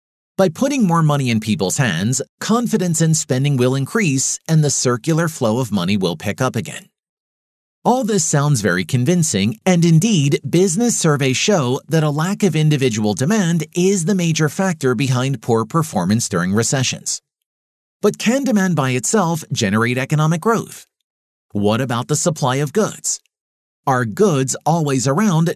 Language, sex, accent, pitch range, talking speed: English, male, American, 125-185 Hz, 155 wpm